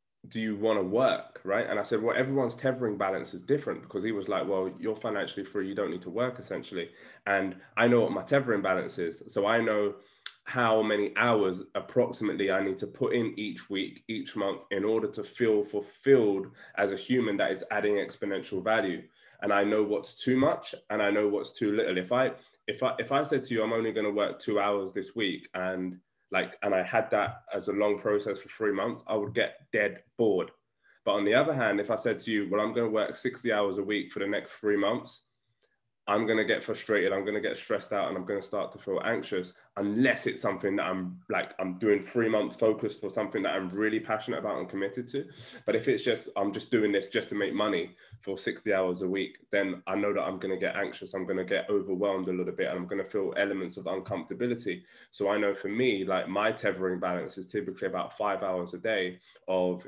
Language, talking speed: English, 235 wpm